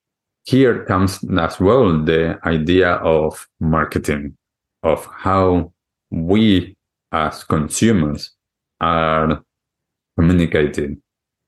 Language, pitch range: English, 80-90 Hz